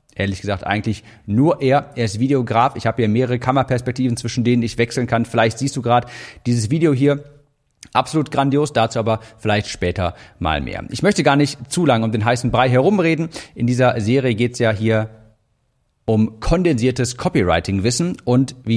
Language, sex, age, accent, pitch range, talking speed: German, male, 40-59, German, 115-140 Hz, 180 wpm